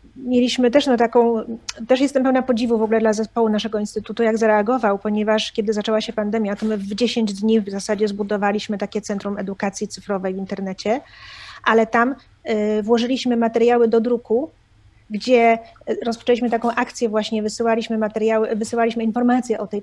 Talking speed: 155 wpm